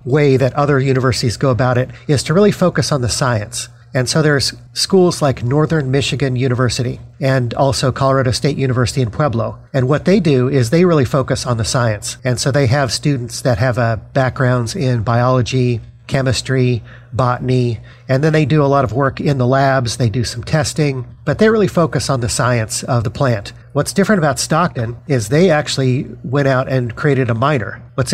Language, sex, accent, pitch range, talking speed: English, male, American, 120-145 Hz, 195 wpm